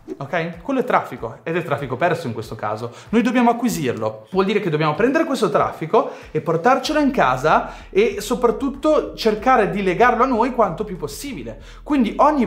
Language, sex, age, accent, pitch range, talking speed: Italian, male, 30-49, native, 150-215 Hz, 180 wpm